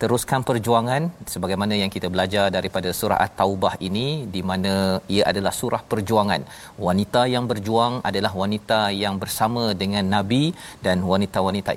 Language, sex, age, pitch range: Malayalam, male, 40-59, 95-110 Hz